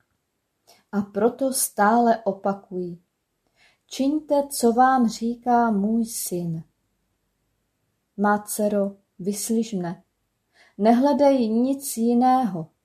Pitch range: 200-250 Hz